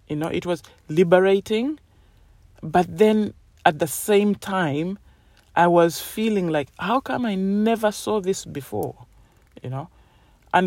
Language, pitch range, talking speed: English, 145-205 Hz, 140 wpm